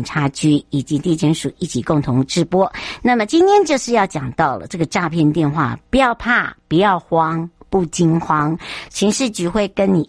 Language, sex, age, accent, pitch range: Chinese, male, 60-79, American, 150-190 Hz